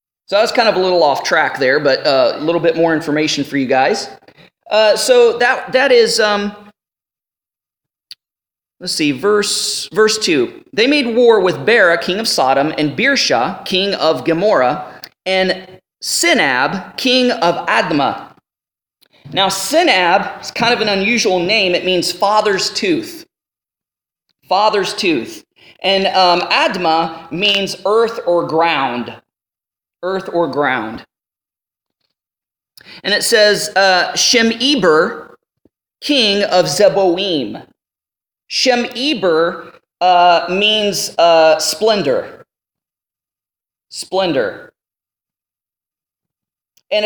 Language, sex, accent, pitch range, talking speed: English, male, American, 165-220 Hz, 115 wpm